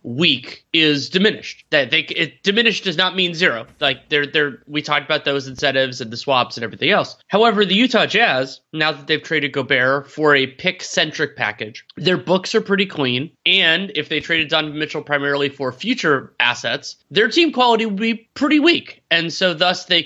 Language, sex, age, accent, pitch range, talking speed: English, male, 20-39, American, 130-170 Hz, 195 wpm